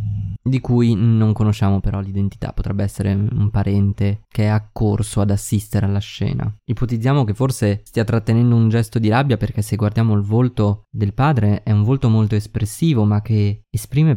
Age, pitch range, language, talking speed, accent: 20-39, 105-130 Hz, Italian, 175 wpm, native